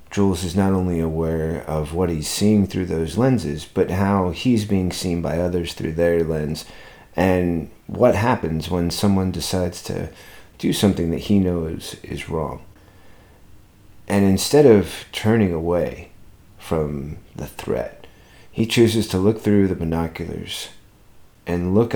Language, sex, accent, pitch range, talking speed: English, male, American, 85-100 Hz, 145 wpm